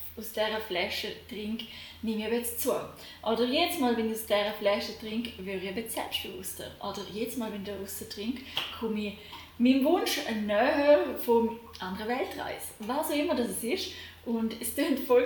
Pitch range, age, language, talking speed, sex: 210-265 Hz, 10-29, German, 175 wpm, female